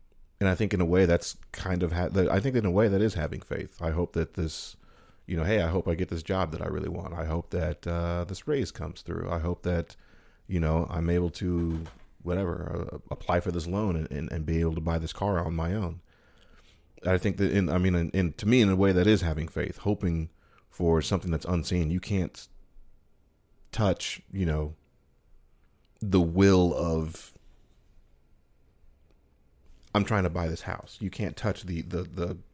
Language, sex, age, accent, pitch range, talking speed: English, male, 40-59, American, 85-95 Hz, 195 wpm